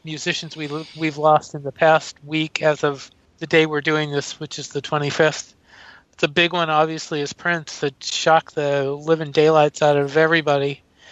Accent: American